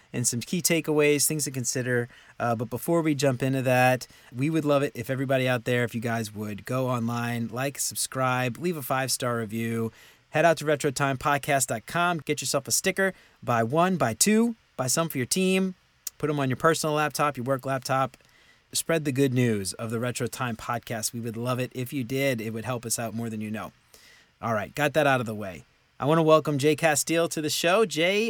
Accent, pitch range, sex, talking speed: American, 120-155 Hz, male, 220 wpm